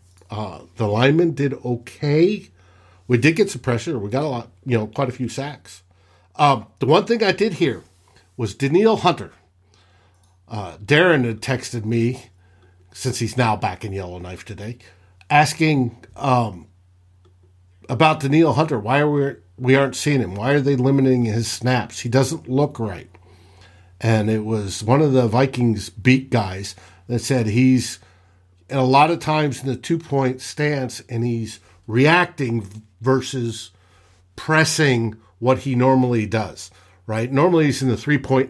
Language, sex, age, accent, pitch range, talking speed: English, male, 50-69, American, 95-140 Hz, 155 wpm